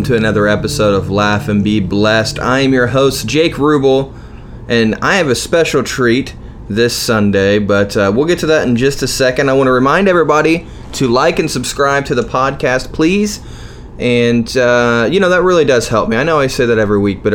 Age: 20-39